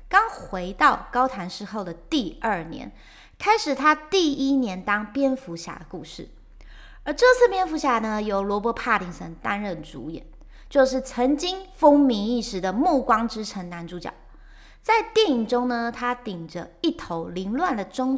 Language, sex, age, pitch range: Chinese, female, 20-39, 195-300 Hz